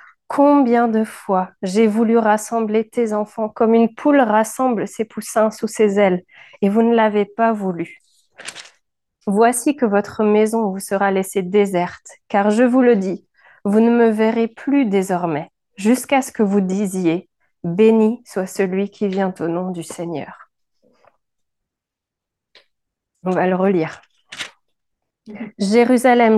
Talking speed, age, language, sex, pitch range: 140 wpm, 30-49, French, female, 195-230 Hz